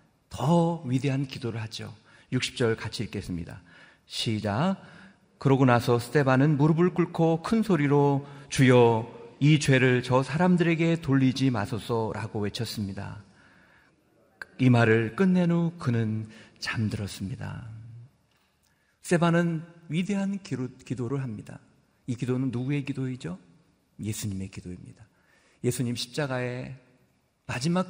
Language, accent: Korean, native